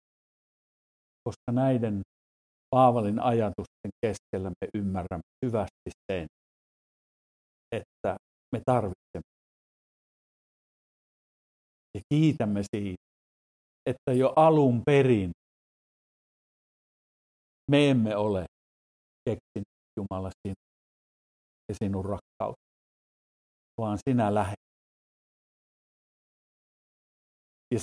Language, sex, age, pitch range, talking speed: Finnish, male, 50-69, 85-120 Hz, 65 wpm